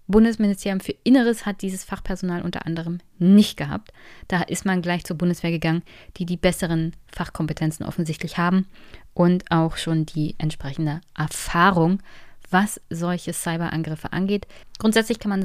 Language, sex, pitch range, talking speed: German, female, 165-195 Hz, 140 wpm